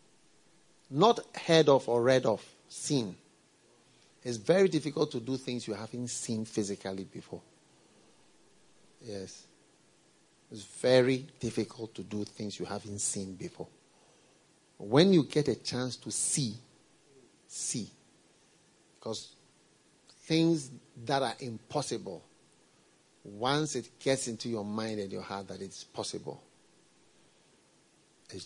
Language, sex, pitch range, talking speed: English, male, 105-145 Hz, 115 wpm